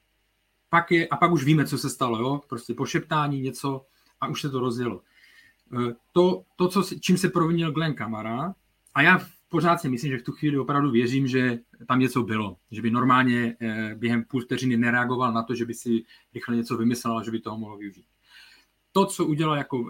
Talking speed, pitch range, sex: 200 wpm, 120-155 Hz, male